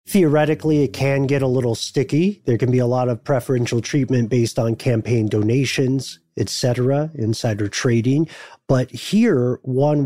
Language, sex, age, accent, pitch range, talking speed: English, male, 40-59, American, 120-145 Hz, 155 wpm